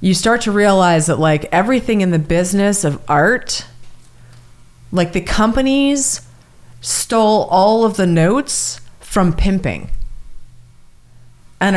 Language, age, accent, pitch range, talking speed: English, 30-49, American, 125-195 Hz, 115 wpm